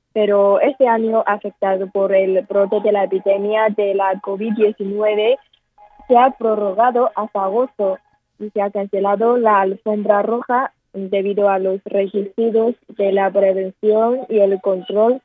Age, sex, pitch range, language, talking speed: 20-39, female, 195-230 Hz, Spanish, 140 wpm